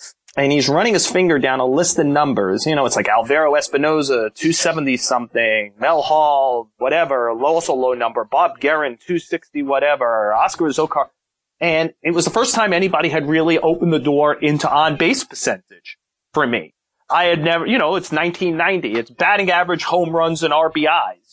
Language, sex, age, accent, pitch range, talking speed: English, male, 30-49, American, 135-165 Hz, 165 wpm